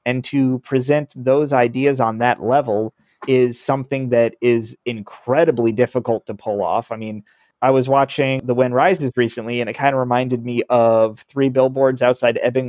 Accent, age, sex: American, 30-49, male